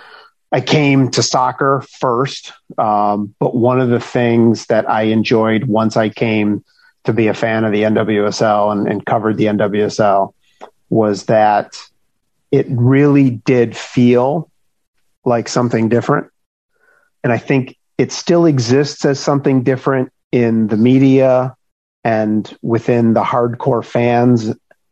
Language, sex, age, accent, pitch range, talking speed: English, male, 40-59, American, 110-135 Hz, 130 wpm